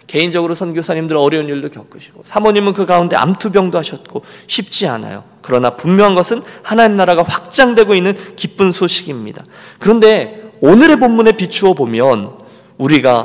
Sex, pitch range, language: male, 140-205 Hz, Korean